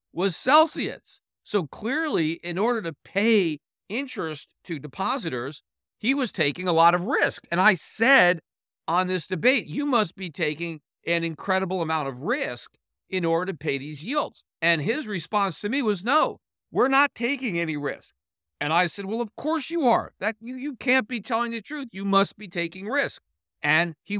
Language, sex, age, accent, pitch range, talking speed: English, male, 50-69, American, 165-220 Hz, 185 wpm